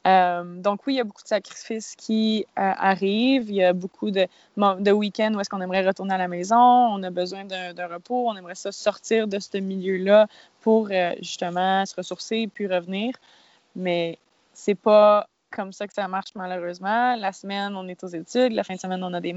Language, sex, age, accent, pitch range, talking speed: French, female, 20-39, Canadian, 185-215 Hz, 220 wpm